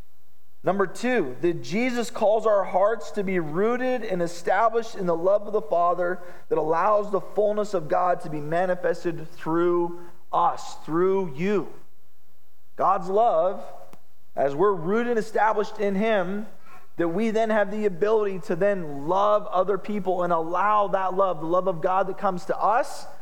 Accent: American